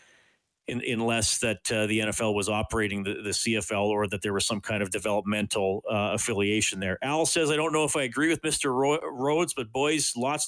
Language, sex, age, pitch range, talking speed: English, male, 40-59, 110-150 Hz, 210 wpm